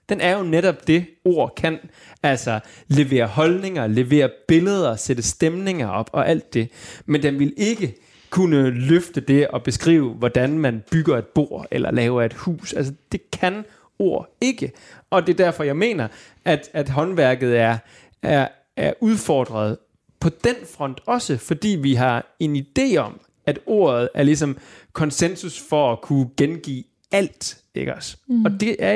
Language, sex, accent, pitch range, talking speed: Danish, male, native, 125-175 Hz, 160 wpm